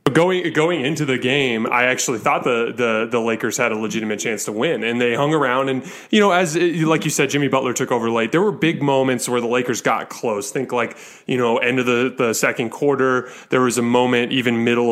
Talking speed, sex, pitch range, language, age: 240 wpm, male, 120-140 Hz, English, 20-39